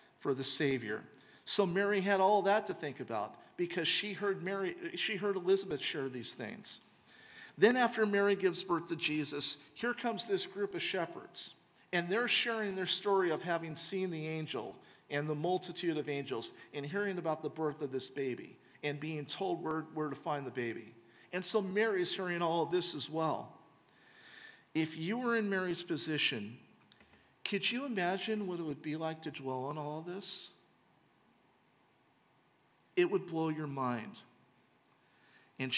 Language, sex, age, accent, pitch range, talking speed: English, male, 50-69, American, 135-185 Hz, 170 wpm